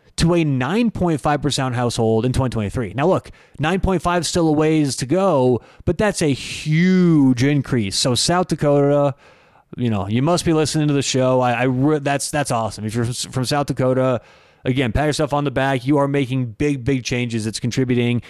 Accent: American